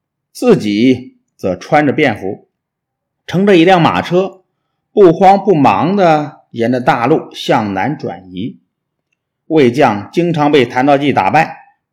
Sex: male